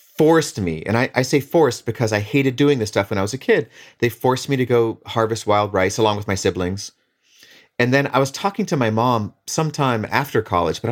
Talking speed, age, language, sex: 230 wpm, 30-49, English, male